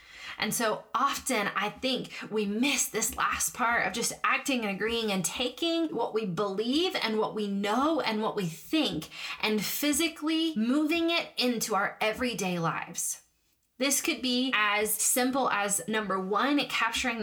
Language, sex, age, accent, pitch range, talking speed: English, female, 20-39, American, 200-260 Hz, 155 wpm